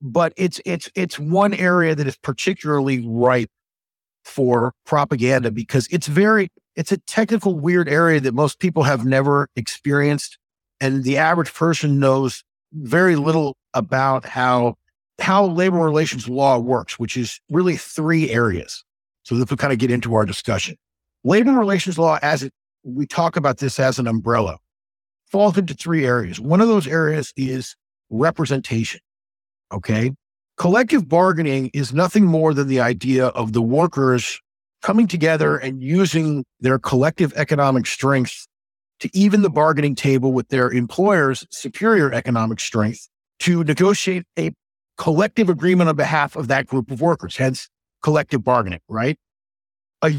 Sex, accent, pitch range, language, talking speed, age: male, American, 130-175 Hz, English, 150 wpm, 50-69